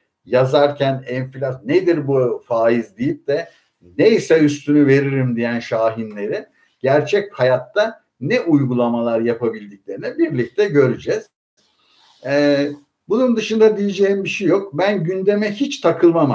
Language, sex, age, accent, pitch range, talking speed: Turkish, male, 60-79, native, 135-210 Hz, 110 wpm